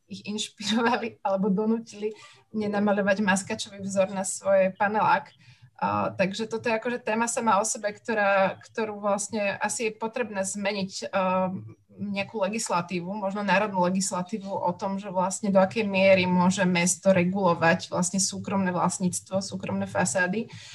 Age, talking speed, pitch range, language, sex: 20-39, 130 wpm, 190-220 Hz, Slovak, female